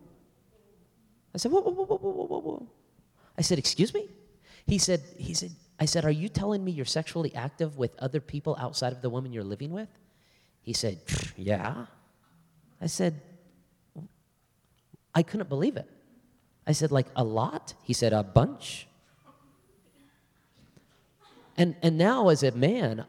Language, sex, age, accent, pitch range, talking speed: English, male, 30-49, American, 135-175 Hz, 155 wpm